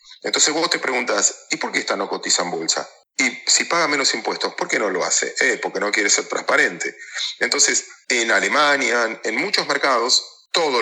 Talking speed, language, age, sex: 195 wpm, Spanish, 40-59, male